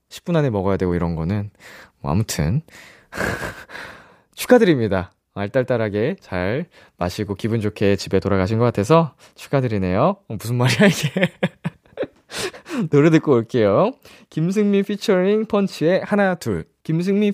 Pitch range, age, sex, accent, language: 100-165 Hz, 20-39, male, native, Korean